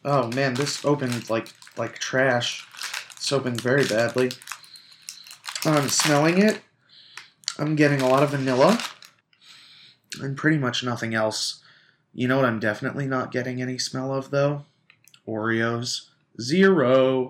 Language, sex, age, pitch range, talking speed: English, male, 30-49, 115-145 Hz, 135 wpm